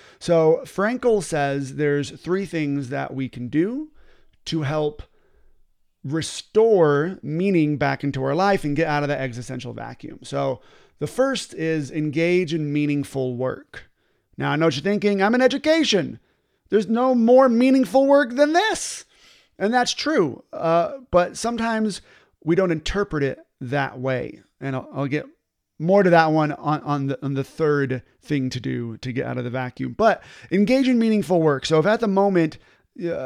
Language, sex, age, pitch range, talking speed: English, male, 30-49, 140-195 Hz, 170 wpm